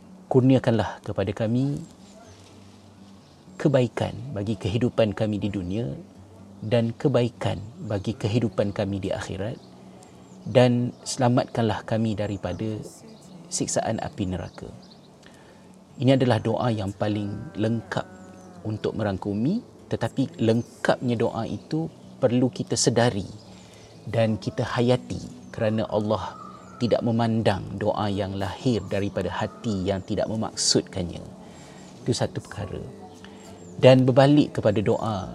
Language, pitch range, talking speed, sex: Malay, 100-120 Hz, 100 wpm, male